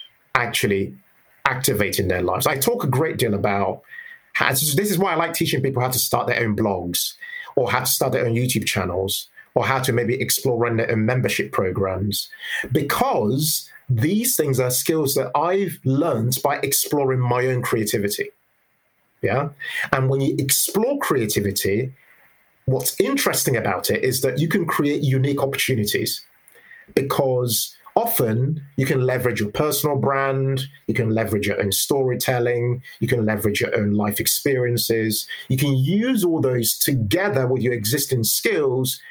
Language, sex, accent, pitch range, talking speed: English, male, British, 110-140 Hz, 155 wpm